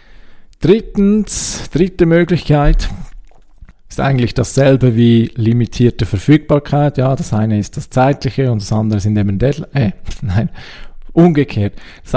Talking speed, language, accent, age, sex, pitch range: 125 wpm, German, Austrian, 40-59, male, 110-140 Hz